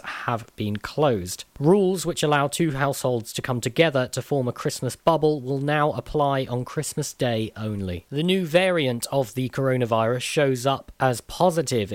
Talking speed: 165 wpm